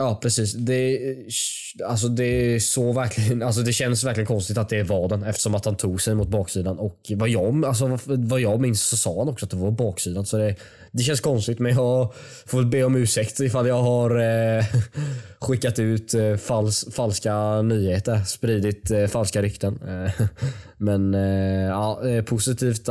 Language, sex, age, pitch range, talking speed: English, male, 20-39, 105-130 Hz, 185 wpm